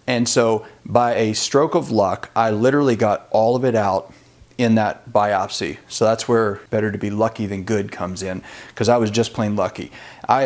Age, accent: 40-59, American